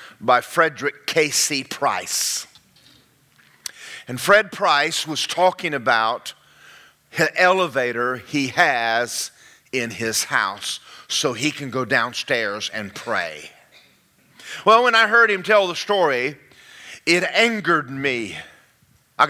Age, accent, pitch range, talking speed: 50-69, American, 175-265 Hz, 110 wpm